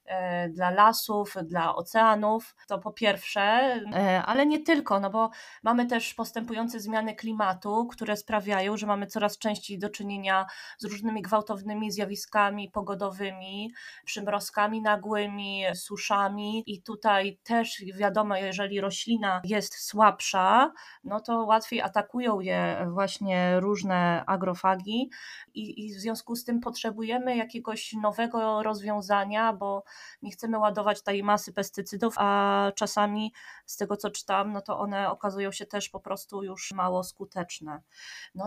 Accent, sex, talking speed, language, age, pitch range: native, female, 130 wpm, Polish, 20-39, 200-230 Hz